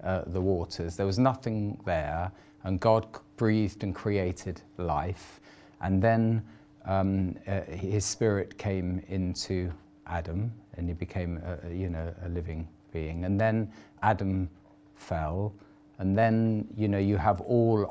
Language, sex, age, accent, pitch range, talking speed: English, male, 40-59, British, 95-110 Hz, 145 wpm